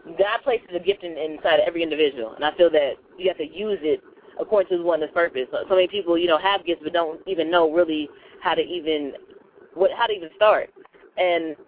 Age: 20-39